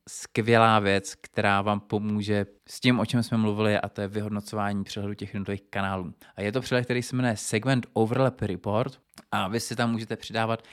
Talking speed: 195 wpm